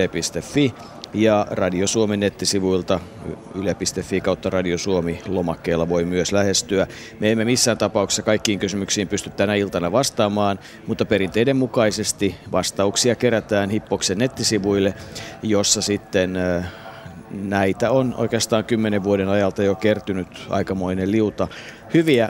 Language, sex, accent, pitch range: Finnish, male, native, 95-115 Hz